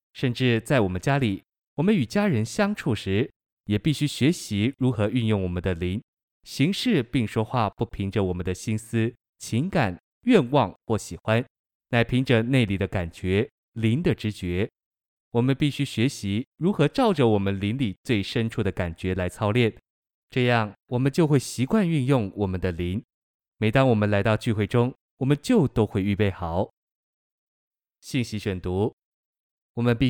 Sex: male